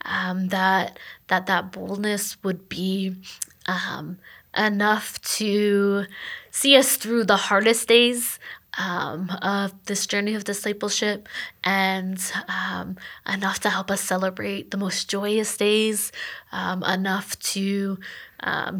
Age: 20-39